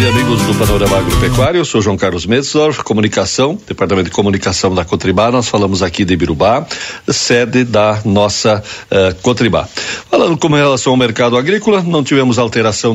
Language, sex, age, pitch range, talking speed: Portuguese, male, 60-79, 105-125 Hz, 160 wpm